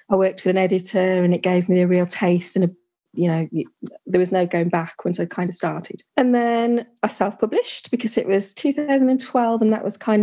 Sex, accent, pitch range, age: female, British, 180-220 Hz, 20-39